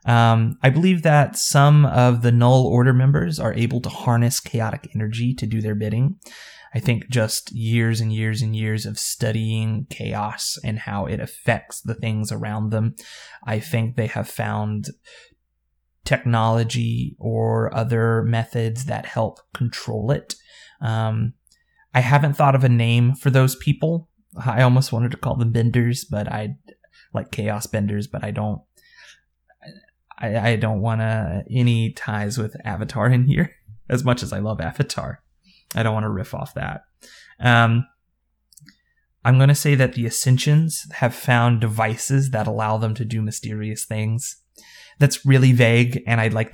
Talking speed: 160 wpm